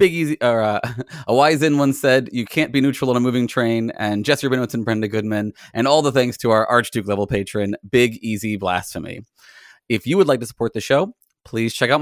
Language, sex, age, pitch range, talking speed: English, male, 20-39, 110-135 Hz, 225 wpm